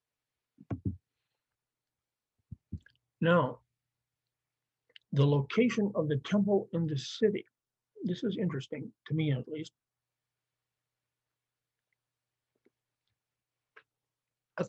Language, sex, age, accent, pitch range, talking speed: English, male, 60-79, American, 130-185 Hz, 70 wpm